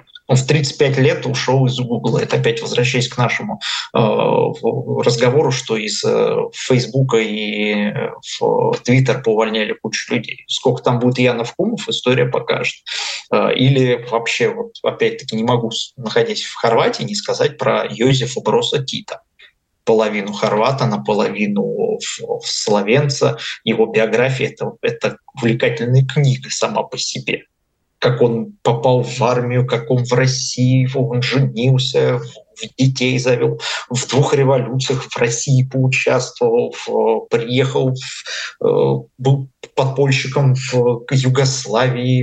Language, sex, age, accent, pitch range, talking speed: Russian, male, 20-39, native, 125-150 Hz, 110 wpm